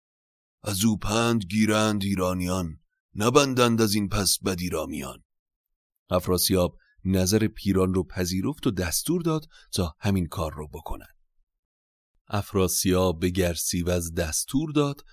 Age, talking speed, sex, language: 30-49, 120 wpm, male, Persian